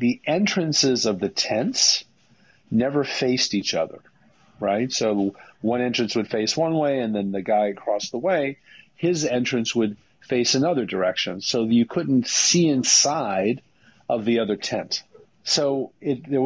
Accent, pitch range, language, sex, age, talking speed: American, 105-140 Hz, English, male, 40-59, 155 wpm